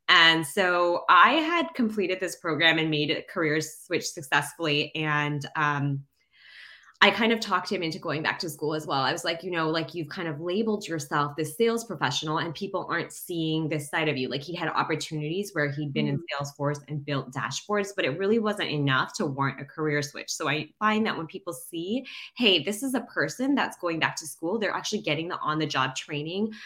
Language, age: English, 20-39